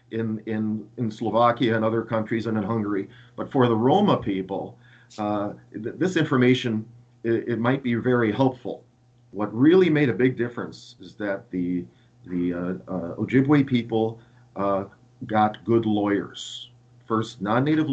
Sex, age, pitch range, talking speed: male, 40-59, 105-125 Hz, 150 wpm